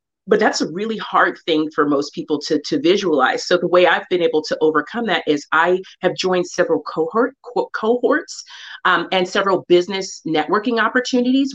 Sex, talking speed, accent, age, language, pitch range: female, 180 wpm, American, 40-59, English, 175-235 Hz